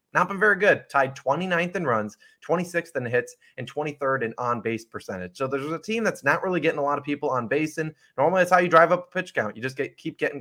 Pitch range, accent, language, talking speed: 120-165 Hz, American, English, 260 wpm